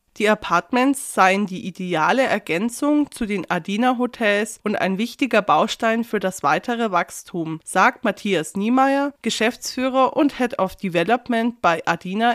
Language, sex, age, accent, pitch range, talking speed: German, female, 20-39, German, 185-240 Hz, 130 wpm